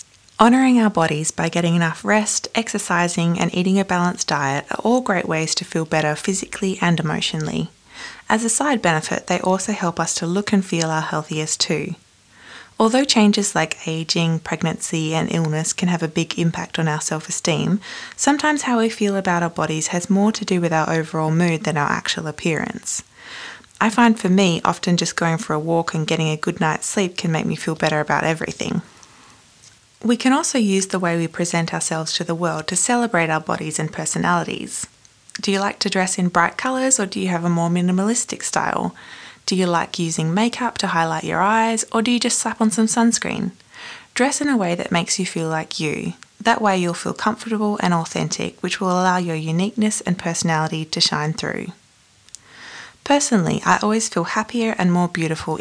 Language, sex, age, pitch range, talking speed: English, female, 20-39, 160-215 Hz, 195 wpm